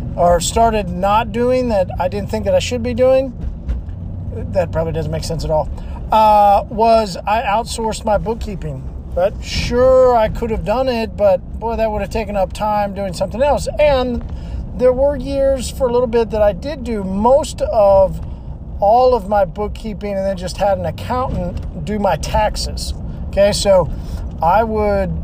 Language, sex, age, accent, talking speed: English, male, 40-59, American, 180 wpm